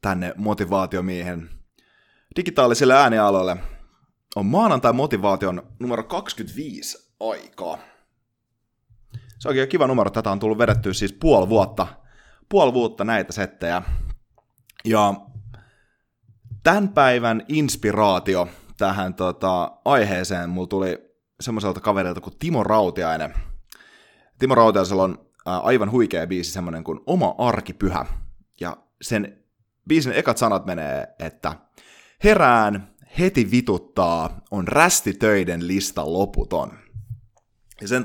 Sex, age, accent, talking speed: male, 30-49, native, 105 wpm